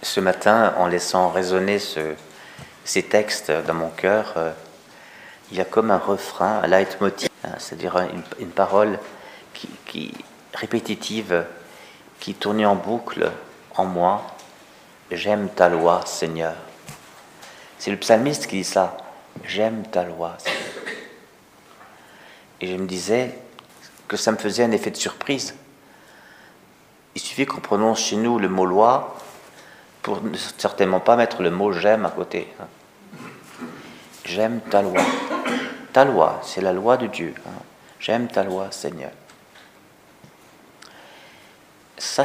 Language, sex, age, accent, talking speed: French, male, 40-59, French, 140 wpm